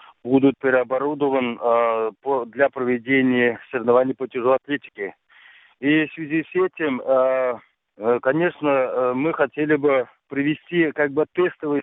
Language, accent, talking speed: Russian, native, 110 wpm